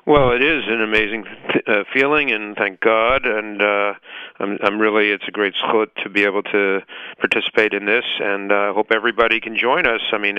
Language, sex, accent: English, male, American